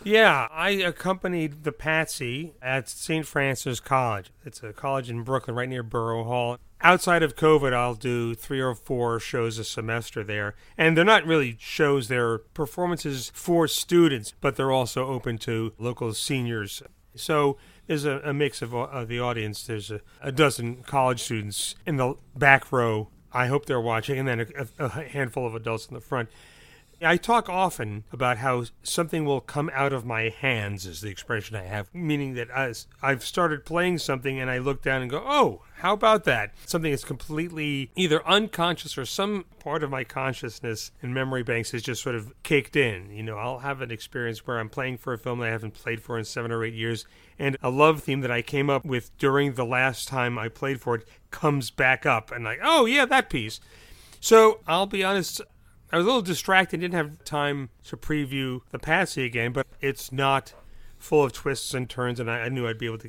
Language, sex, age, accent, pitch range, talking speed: English, male, 40-59, American, 115-155 Hz, 205 wpm